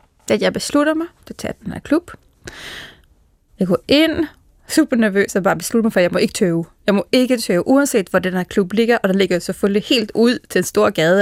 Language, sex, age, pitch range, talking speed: Danish, female, 20-39, 195-270 Hz, 235 wpm